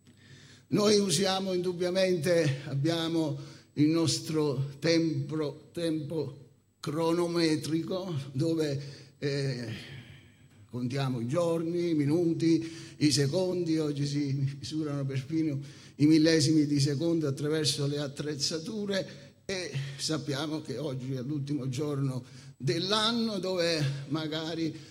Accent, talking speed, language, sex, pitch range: native, 95 wpm, Italian, male, 140-175 Hz